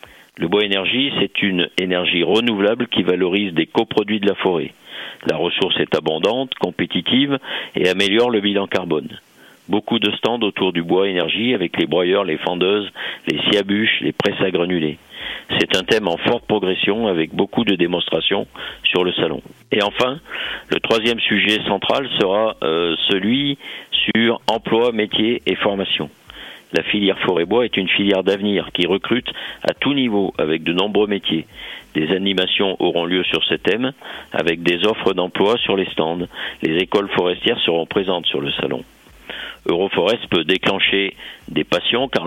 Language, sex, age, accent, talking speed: French, male, 50-69, French, 160 wpm